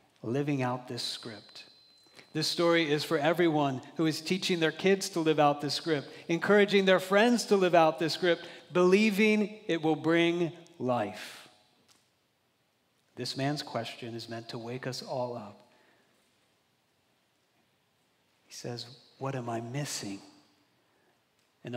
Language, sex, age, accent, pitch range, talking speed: English, male, 40-59, American, 125-175 Hz, 135 wpm